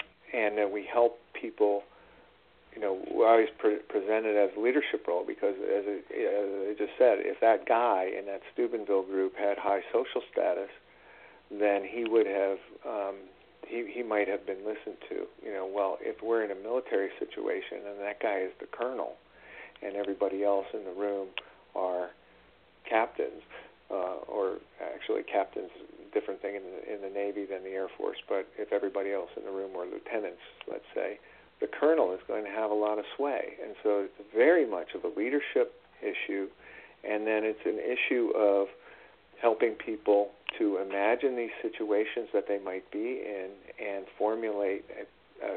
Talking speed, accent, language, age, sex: 175 wpm, American, English, 50-69, male